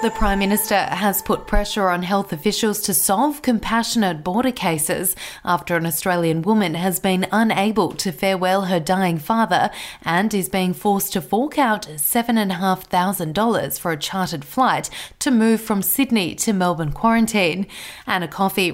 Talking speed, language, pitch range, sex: 150 wpm, English, 180-220 Hz, female